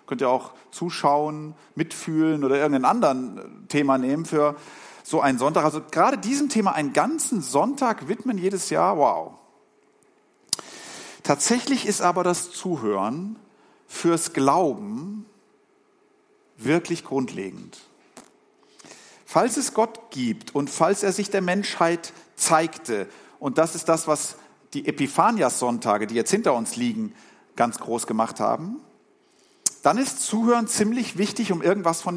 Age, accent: 50-69, German